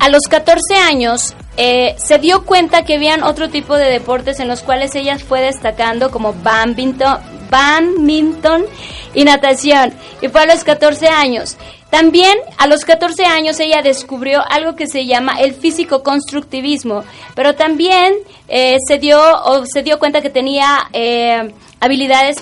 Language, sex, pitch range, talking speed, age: Spanish, female, 255-310 Hz, 155 wpm, 20-39